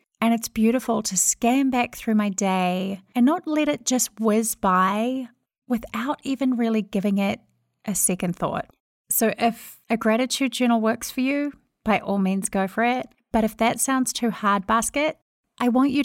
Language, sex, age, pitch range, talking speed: English, female, 30-49, 195-240 Hz, 180 wpm